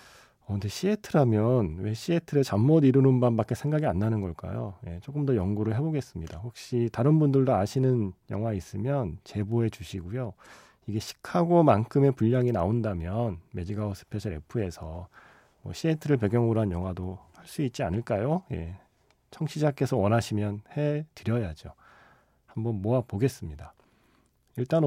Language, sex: Korean, male